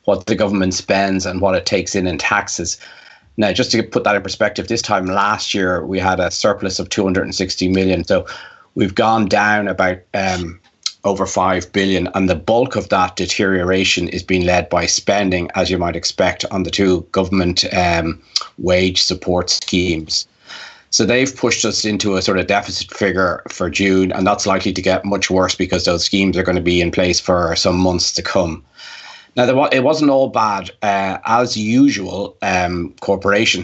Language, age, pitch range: English, 30-49, 90-100 Hz